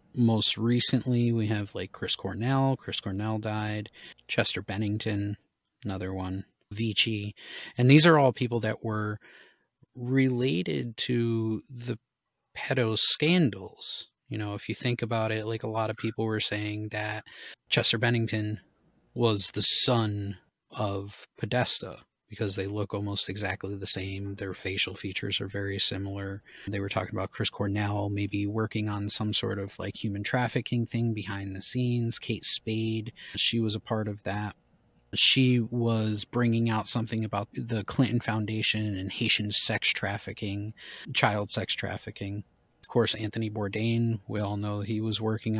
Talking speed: 150 wpm